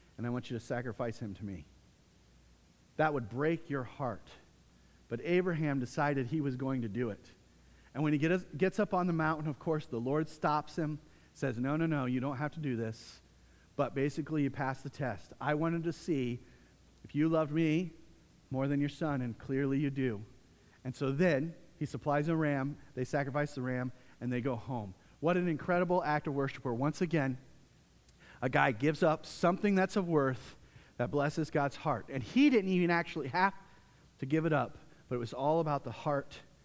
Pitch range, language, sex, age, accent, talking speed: 125-170 Hz, English, male, 40-59, American, 200 wpm